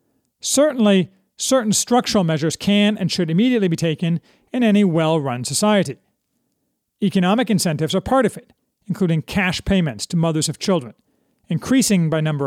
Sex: male